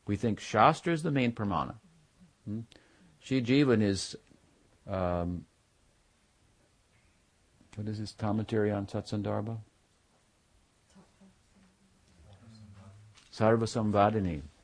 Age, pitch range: 60-79, 90-110 Hz